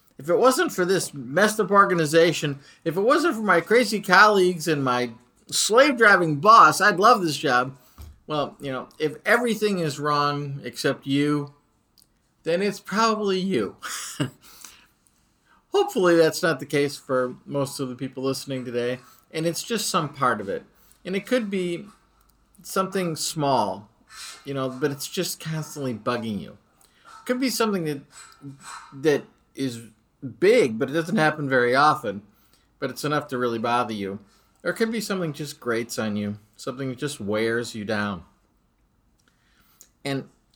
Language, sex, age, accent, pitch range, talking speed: English, male, 50-69, American, 130-195 Hz, 155 wpm